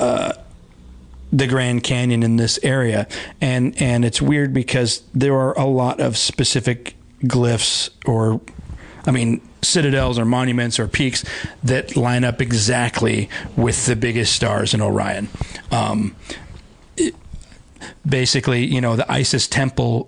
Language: English